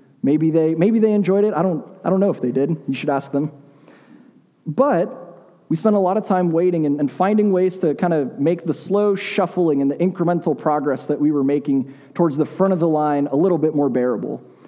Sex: male